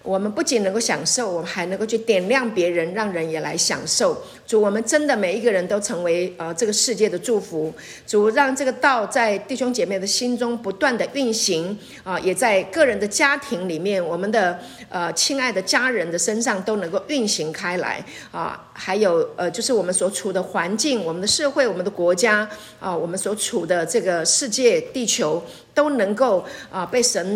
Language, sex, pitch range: Chinese, female, 185-245 Hz